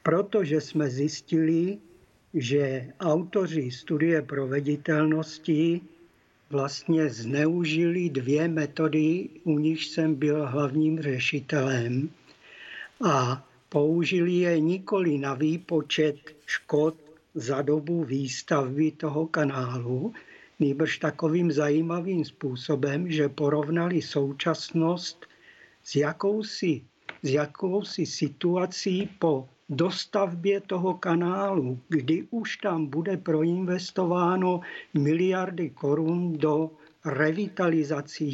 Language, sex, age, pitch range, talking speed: Czech, male, 50-69, 145-170 Hz, 85 wpm